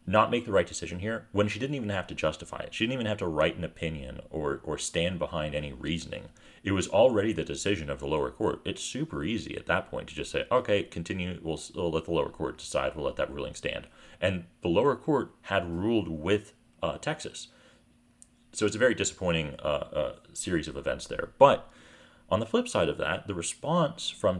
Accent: American